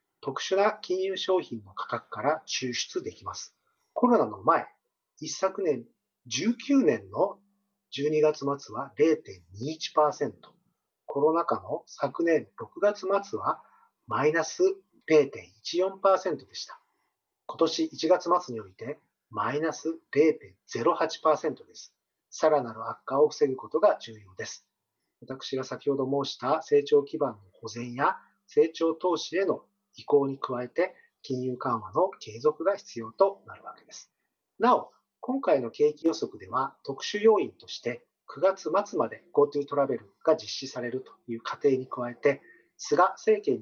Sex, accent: male, native